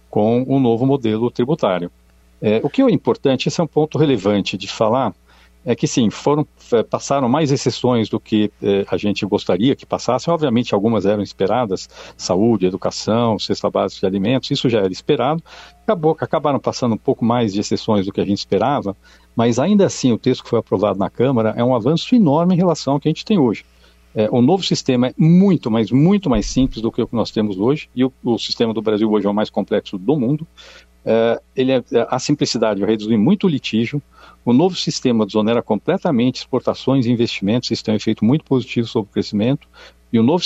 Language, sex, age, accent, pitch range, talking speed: Portuguese, male, 60-79, Brazilian, 105-135 Hz, 205 wpm